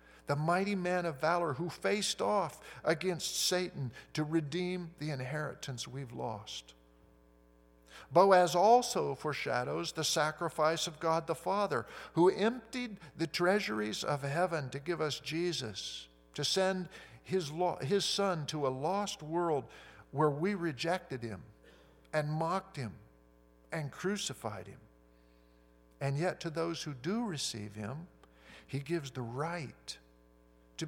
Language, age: English, 50-69